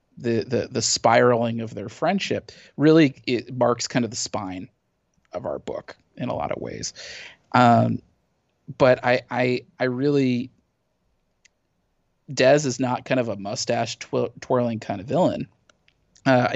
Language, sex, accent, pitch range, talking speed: English, male, American, 115-125 Hz, 150 wpm